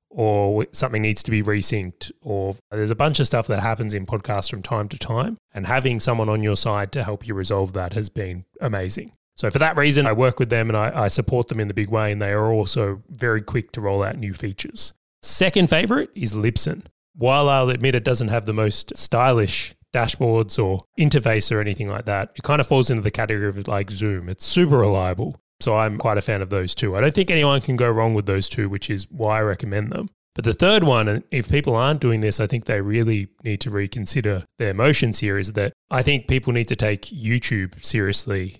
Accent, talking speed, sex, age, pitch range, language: Australian, 230 wpm, male, 20-39, 105-130 Hz, English